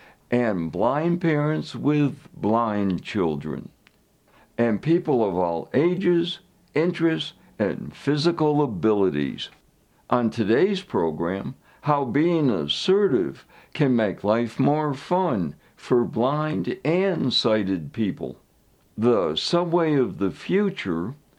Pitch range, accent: 110-160 Hz, American